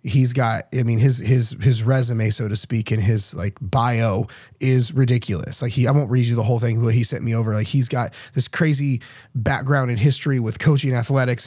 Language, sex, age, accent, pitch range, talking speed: English, male, 20-39, American, 120-155 Hz, 220 wpm